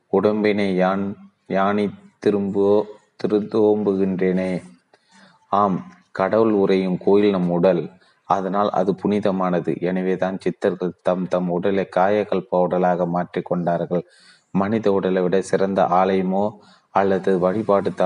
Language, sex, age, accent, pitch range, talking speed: Tamil, male, 30-49, native, 90-100 Hz, 95 wpm